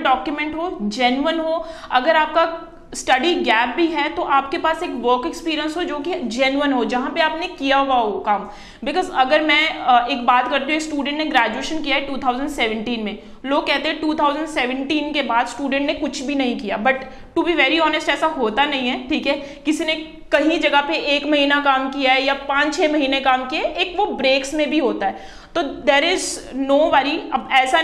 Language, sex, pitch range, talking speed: Punjabi, female, 265-320 Hz, 160 wpm